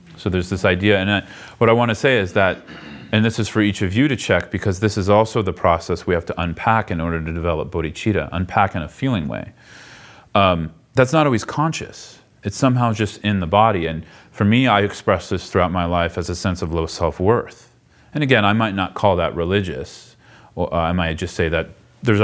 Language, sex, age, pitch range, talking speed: English, male, 30-49, 90-125 Hz, 220 wpm